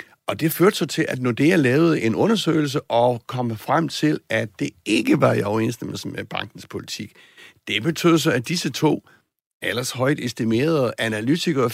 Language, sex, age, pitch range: Danish, male, 60-79, 115-155 Hz